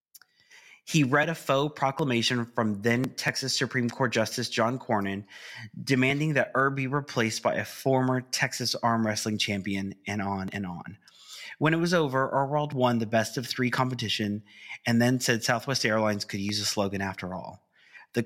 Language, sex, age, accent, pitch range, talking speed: English, male, 30-49, American, 105-130 Hz, 170 wpm